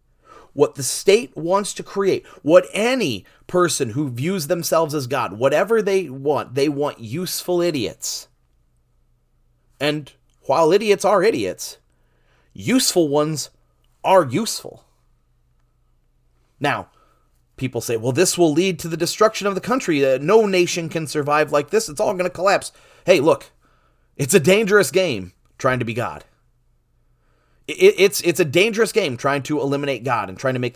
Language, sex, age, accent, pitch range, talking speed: English, male, 30-49, American, 115-180 Hz, 150 wpm